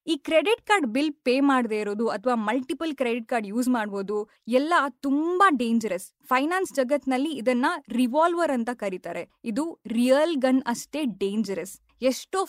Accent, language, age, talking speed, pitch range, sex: native, Kannada, 20-39, 135 wpm, 235-305 Hz, female